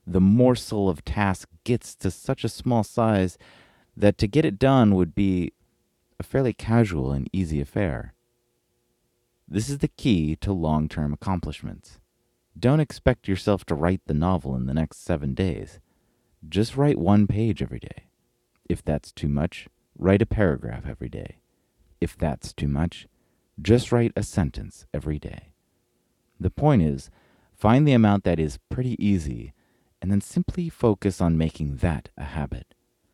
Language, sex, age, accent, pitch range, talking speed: English, male, 30-49, American, 80-115 Hz, 155 wpm